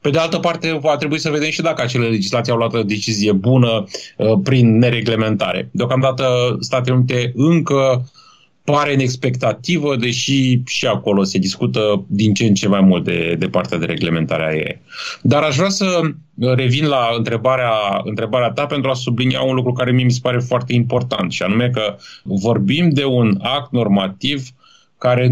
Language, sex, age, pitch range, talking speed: Romanian, male, 30-49, 105-140 Hz, 175 wpm